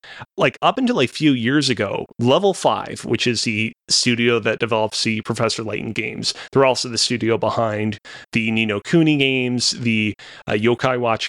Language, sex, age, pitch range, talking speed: English, male, 30-49, 110-130 Hz, 170 wpm